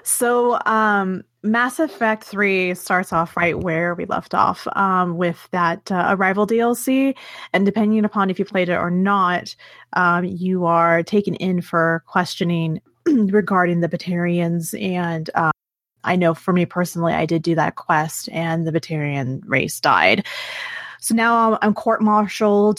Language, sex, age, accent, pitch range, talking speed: English, female, 30-49, American, 165-205 Hz, 155 wpm